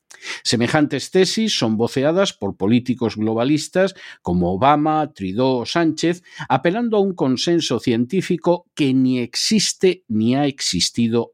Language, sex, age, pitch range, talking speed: Spanish, male, 50-69, 115-170 Hz, 120 wpm